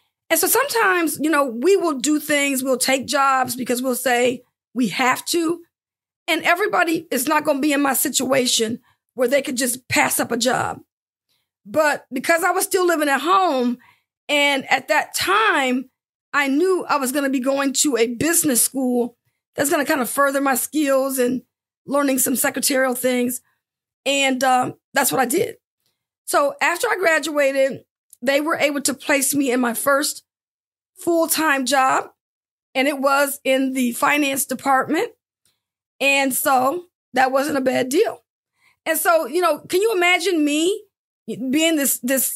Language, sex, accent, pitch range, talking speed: English, female, American, 260-320 Hz, 170 wpm